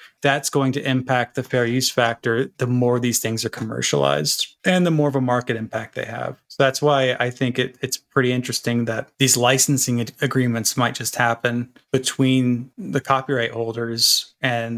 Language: English